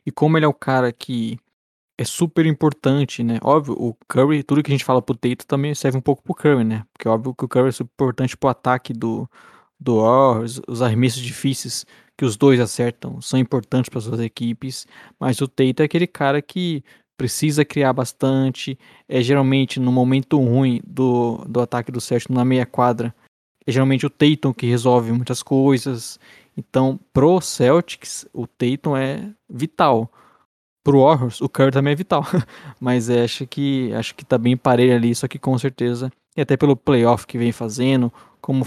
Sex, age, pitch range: male, 20-39, 120-140 Hz